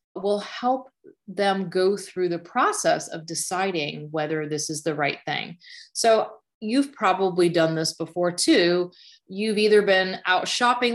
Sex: female